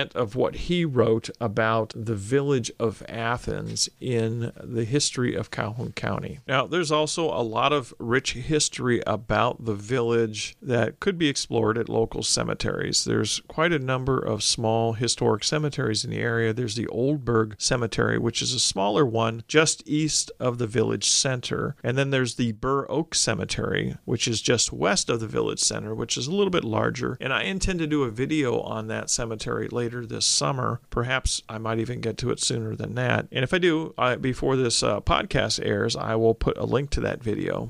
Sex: male